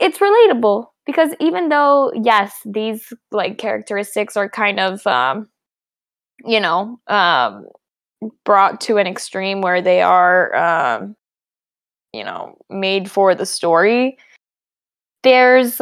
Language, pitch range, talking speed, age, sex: English, 195-245 Hz, 120 wpm, 10-29, female